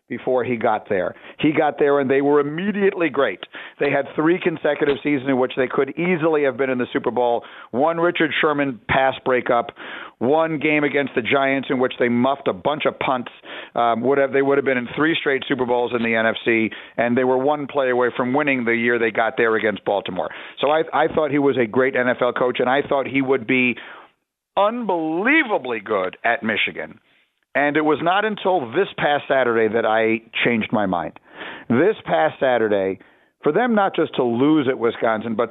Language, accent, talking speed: English, American, 205 wpm